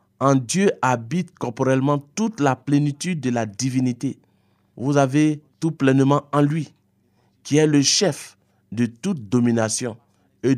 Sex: male